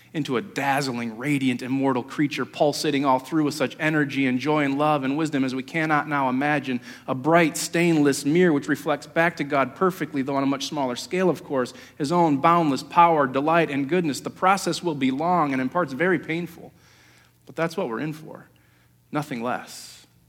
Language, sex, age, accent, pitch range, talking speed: English, male, 40-59, American, 130-165 Hz, 195 wpm